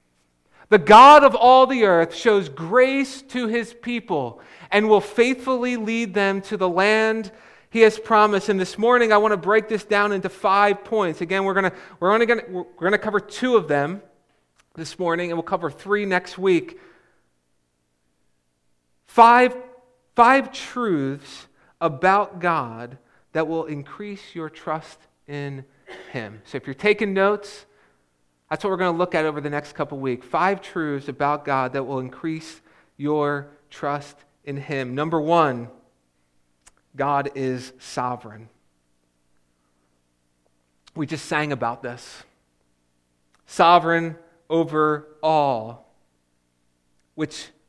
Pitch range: 130-195 Hz